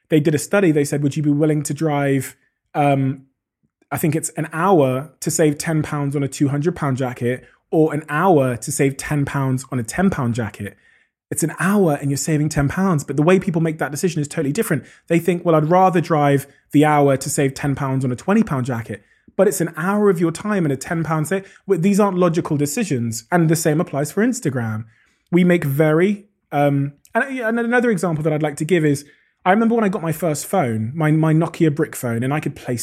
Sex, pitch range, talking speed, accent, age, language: male, 140-190 Hz, 230 wpm, British, 20-39, English